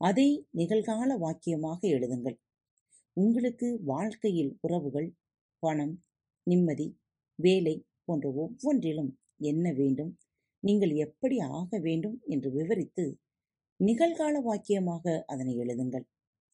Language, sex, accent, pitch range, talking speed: Tamil, female, native, 140-205 Hz, 85 wpm